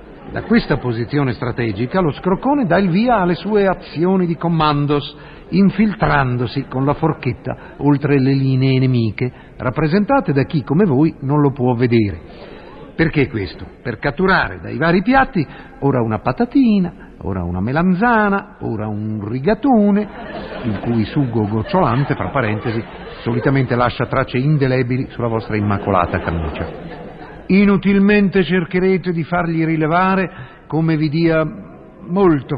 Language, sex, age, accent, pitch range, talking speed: Italian, male, 50-69, native, 125-170 Hz, 130 wpm